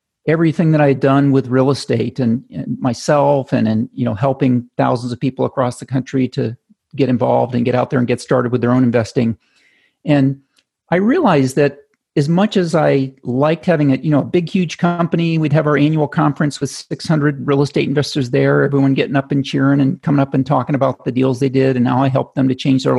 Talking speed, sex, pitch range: 225 wpm, male, 125-145 Hz